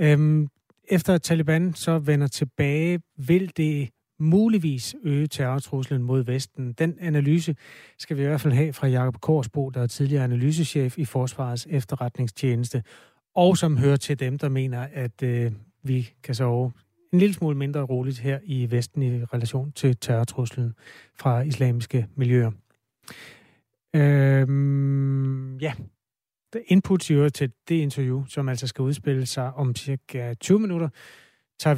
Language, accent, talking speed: Danish, native, 145 wpm